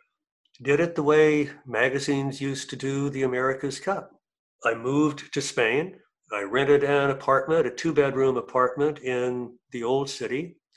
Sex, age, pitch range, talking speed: male, 60-79, 125-160 Hz, 150 wpm